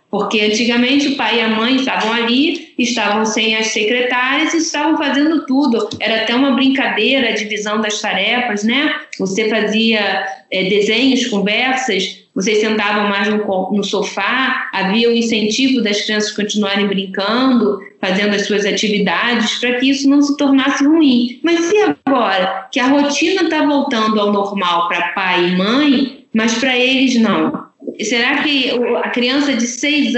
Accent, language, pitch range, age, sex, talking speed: Brazilian, Portuguese, 215-260 Hz, 10-29, female, 155 wpm